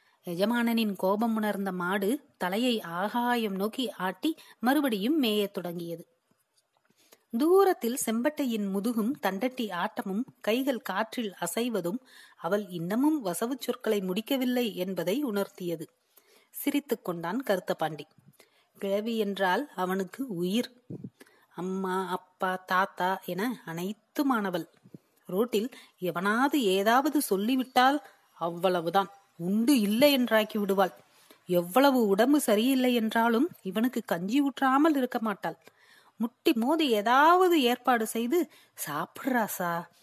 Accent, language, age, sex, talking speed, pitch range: native, Tamil, 30-49, female, 95 wpm, 190-260 Hz